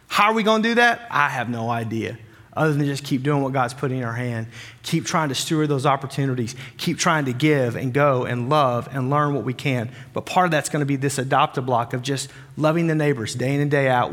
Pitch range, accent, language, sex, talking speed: 140-175 Hz, American, English, male, 255 wpm